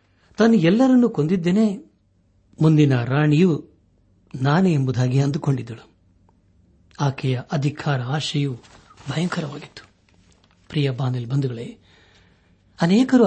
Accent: native